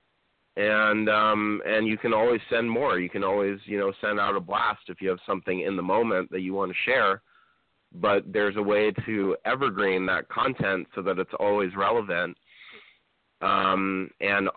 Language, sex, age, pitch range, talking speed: English, male, 30-49, 90-105 Hz, 180 wpm